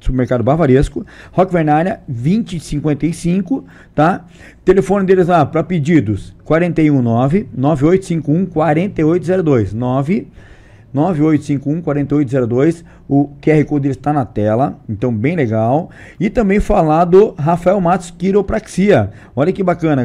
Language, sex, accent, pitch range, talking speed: Portuguese, male, Brazilian, 130-165 Hz, 100 wpm